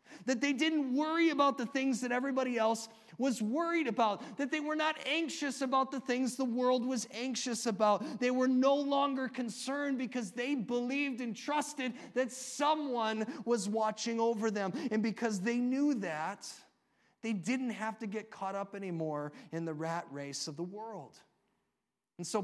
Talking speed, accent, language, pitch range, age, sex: 170 wpm, American, English, 190-250 Hz, 30-49, male